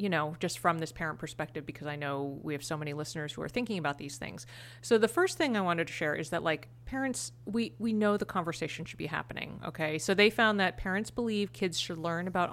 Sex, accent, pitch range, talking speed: female, American, 150-205 Hz, 250 wpm